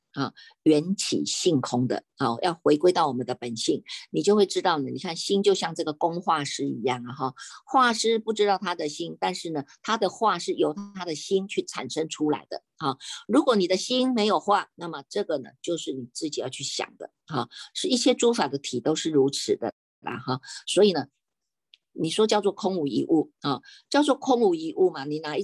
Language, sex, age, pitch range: Chinese, female, 50-69, 150-210 Hz